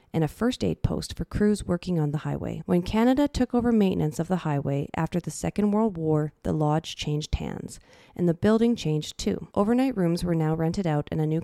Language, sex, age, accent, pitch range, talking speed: English, female, 30-49, American, 150-210 Hz, 215 wpm